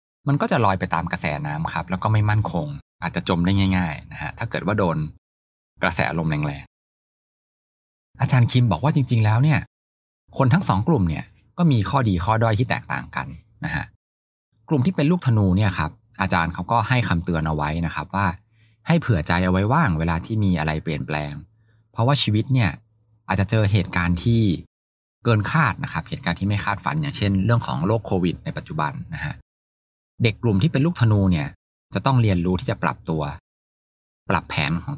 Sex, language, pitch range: male, Thai, 80-115 Hz